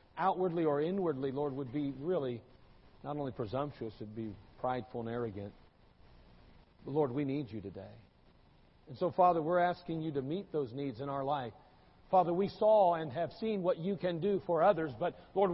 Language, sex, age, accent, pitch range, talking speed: English, male, 50-69, American, 135-205 Hz, 190 wpm